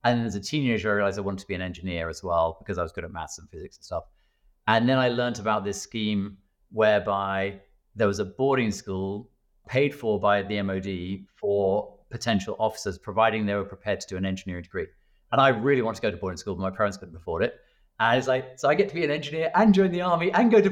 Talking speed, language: 250 wpm, English